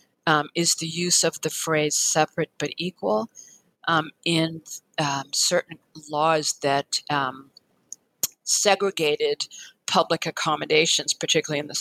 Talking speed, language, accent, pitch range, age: 115 wpm, English, American, 150-175 Hz, 50-69